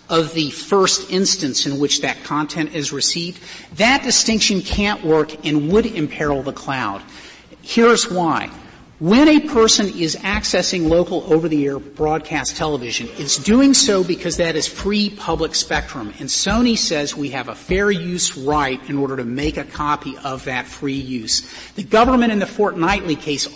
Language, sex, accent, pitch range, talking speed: English, male, American, 145-200 Hz, 165 wpm